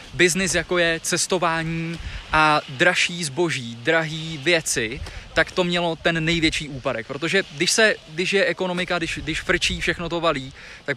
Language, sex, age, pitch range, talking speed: Czech, male, 20-39, 155-180 Hz, 155 wpm